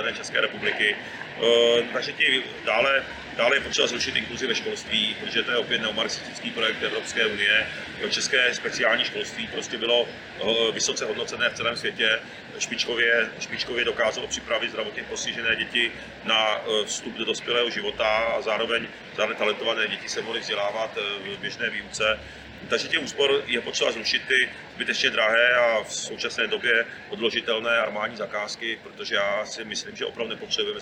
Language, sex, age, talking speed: Czech, male, 40-59, 150 wpm